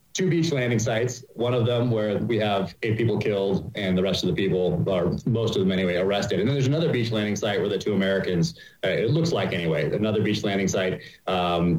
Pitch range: 95-130 Hz